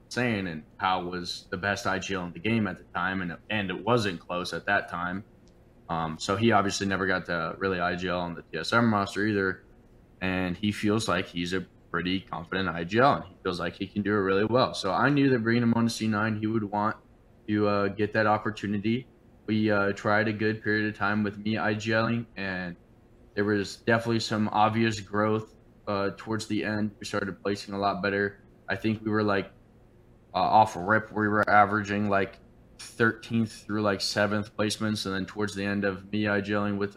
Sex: male